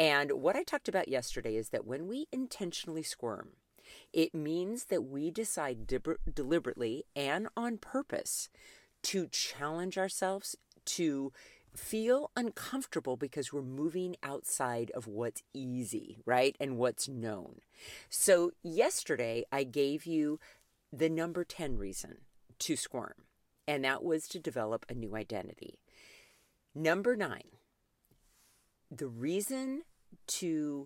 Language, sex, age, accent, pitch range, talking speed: English, female, 40-59, American, 120-165 Hz, 120 wpm